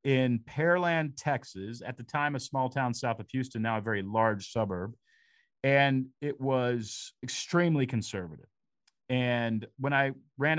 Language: English